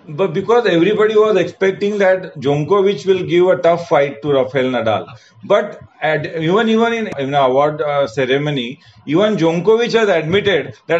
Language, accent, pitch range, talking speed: Hindi, native, 155-210 Hz, 160 wpm